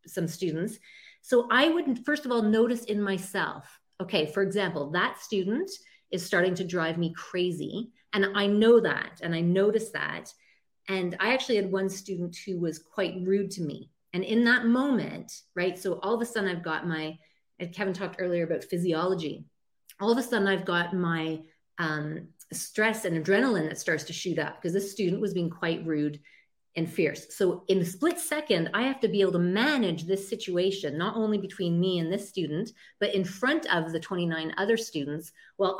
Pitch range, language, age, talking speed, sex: 170-215 Hz, English, 30-49, 195 wpm, female